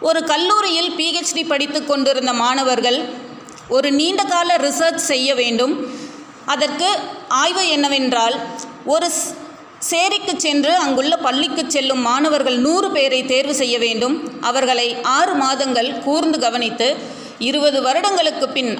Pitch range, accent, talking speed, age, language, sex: 245-305 Hz, native, 110 wpm, 30-49, Tamil, female